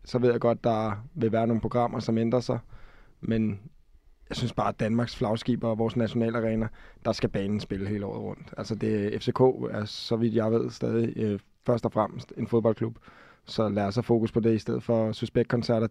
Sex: male